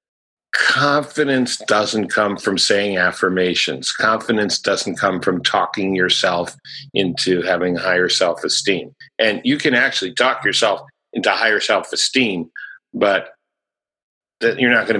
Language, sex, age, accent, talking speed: English, male, 50-69, American, 120 wpm